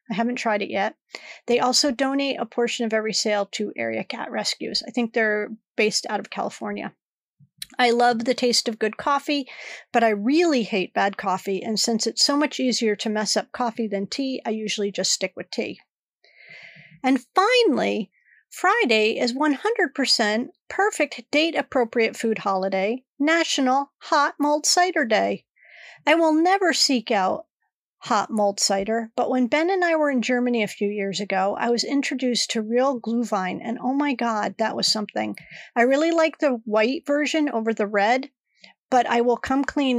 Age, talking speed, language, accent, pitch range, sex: 40-59, 175 wpm, English, American, 215-280 Hz, female